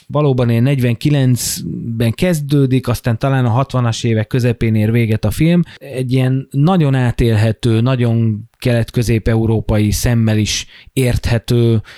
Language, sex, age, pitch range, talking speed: Hungarian, male, 20-39, 105-130 Hz, 115 wpm